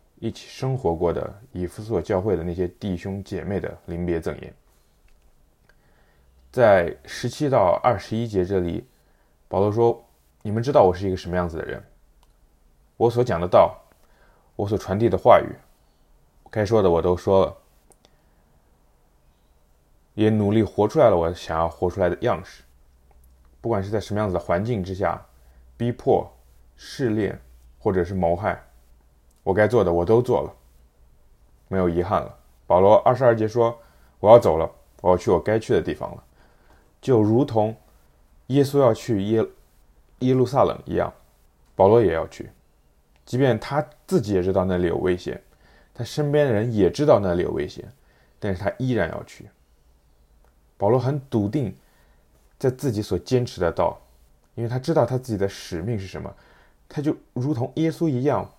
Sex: male